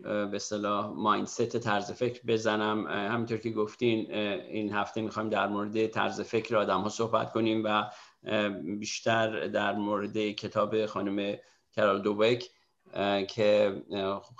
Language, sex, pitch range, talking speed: Persian, male, 105-115 Hz, 115 wpm